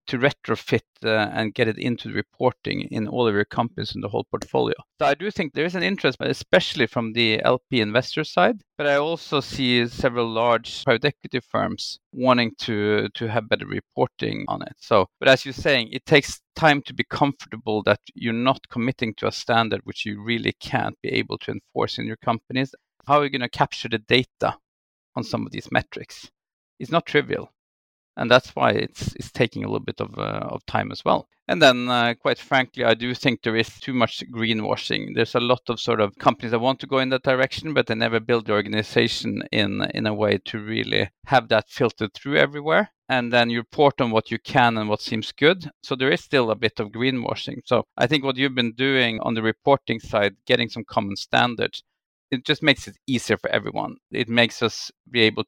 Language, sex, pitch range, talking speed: English, male, 110-135 Hz, 215 wpm